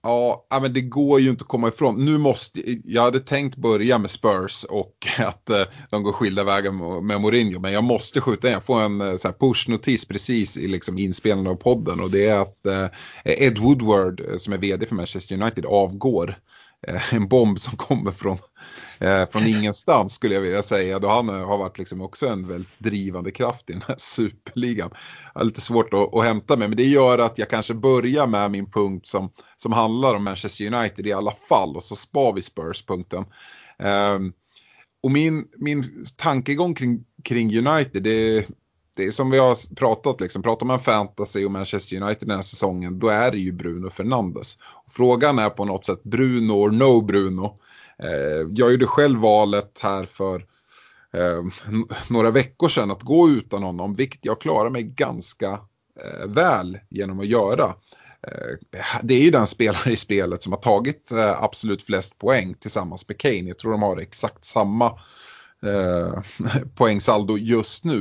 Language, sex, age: Swedish, male, 30-49